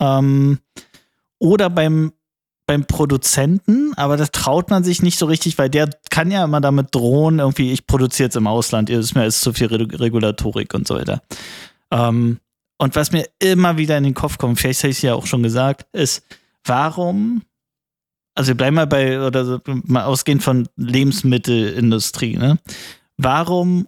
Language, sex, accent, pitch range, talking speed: German, male, German, 125-155 Hz, 170 wpm